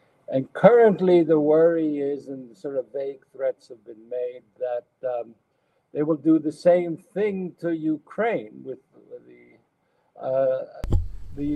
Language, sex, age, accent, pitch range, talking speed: English, male, 60-79, American, 110-155 Hz, 135 wpm